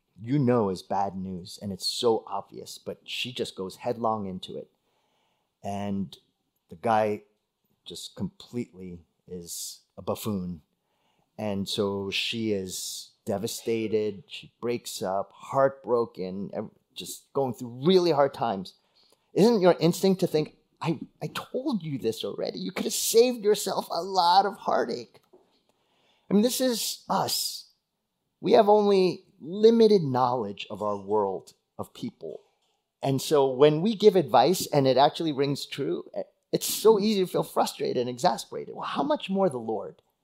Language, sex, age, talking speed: English, male, 30-49, 150 wpm